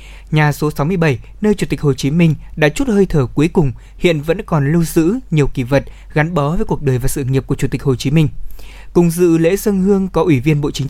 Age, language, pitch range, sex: 20-39, Vietnamese, 145-185 Hz, male